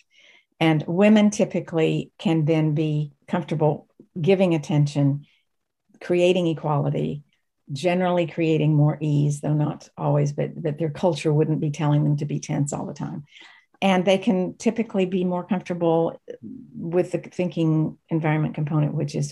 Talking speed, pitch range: 145 wpm, 150-175 Hz